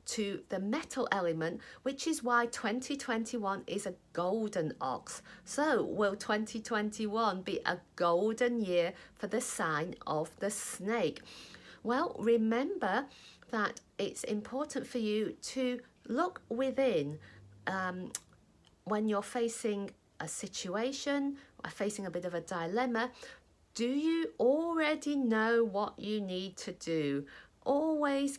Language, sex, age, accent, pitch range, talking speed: English, female, 50-69, British, 195-265 Hz, 125 wpm